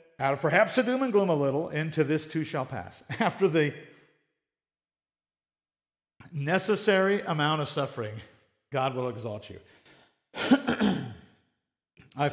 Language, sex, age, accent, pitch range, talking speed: English, male, 50-69, American, 110-175 Hz, 120 wpm